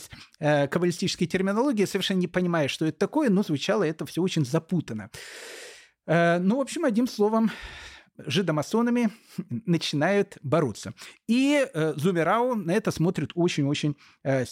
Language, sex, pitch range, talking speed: Russian, male, 150-225 Hz, 115 wpm